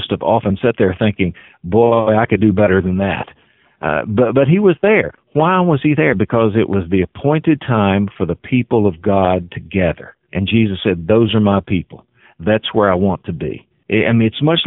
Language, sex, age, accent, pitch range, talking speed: English, male, 50-69, American, 95-120 Hz, 210 wpm